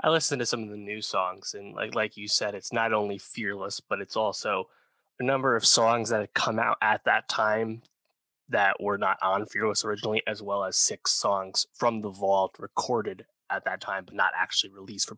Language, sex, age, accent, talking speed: English, male, 20-39, American, 215 wpm